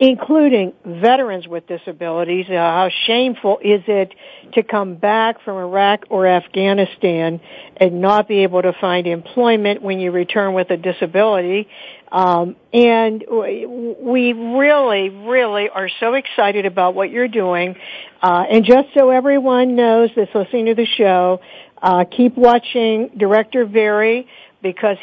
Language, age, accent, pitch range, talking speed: English, 60-79, American, 190-235 Hz, 140 wpm